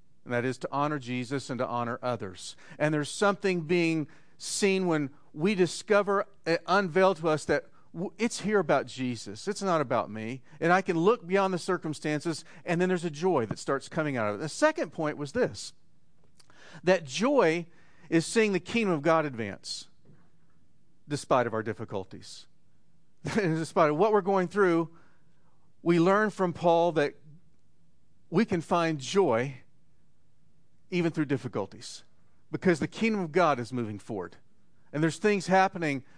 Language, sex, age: English, male, 40-59